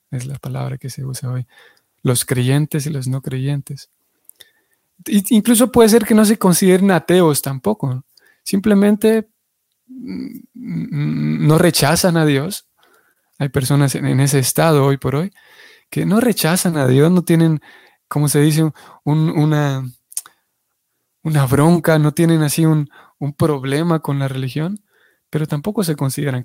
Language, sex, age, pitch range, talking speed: Spanish, male, 20-39, 135-185 Hz, 140 wpm